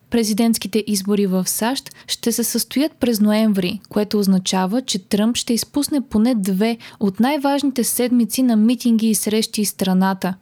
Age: 20-39